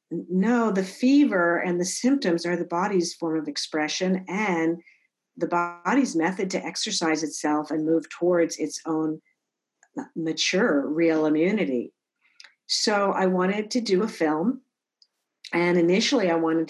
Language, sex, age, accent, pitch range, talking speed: English, female, 50-69, American, 160-195 Hz, 135 wpm